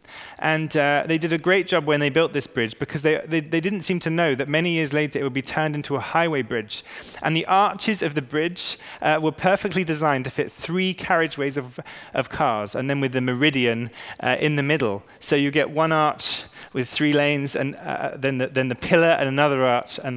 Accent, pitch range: British, 125-165 Hz